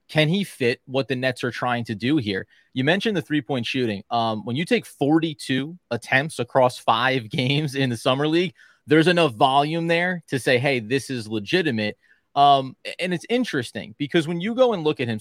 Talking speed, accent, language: 200 wpm, American, English